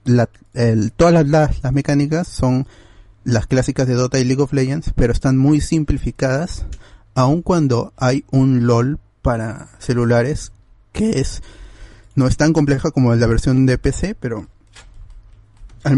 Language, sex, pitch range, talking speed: Spanish, male, 110-135 Hz, 140 wpm